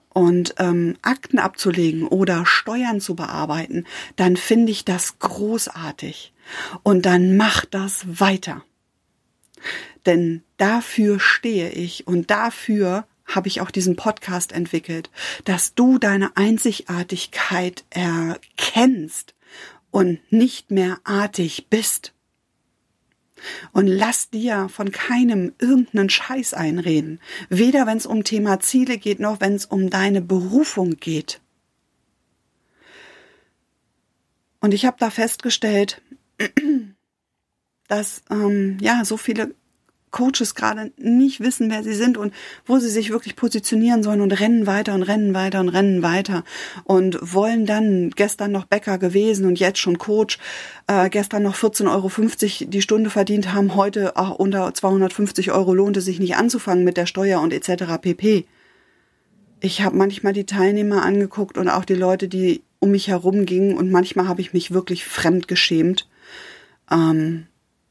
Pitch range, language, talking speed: 185-220 Hz, German, 135 wpm